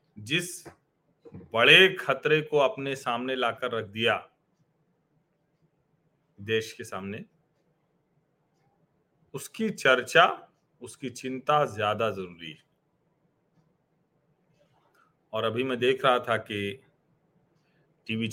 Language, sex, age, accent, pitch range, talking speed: Hindi, male, 40-59, native, 125-160 Hz, 90 wpm